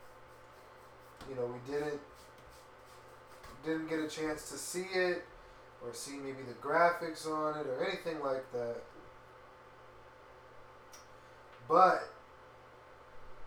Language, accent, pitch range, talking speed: English, American, 135-160 Hz, 100 wpm